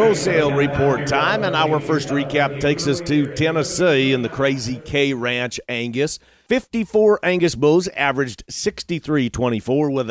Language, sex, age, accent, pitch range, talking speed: English, male, 40-59, American, 130-170 Hz, 135 wpm